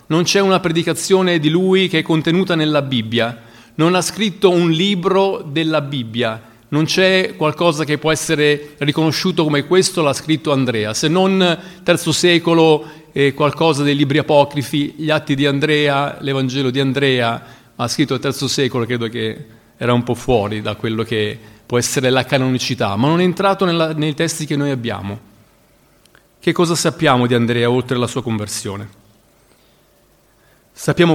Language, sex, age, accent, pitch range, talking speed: Italian, male, 30-49, native, 125-165 Hz, 165 wpm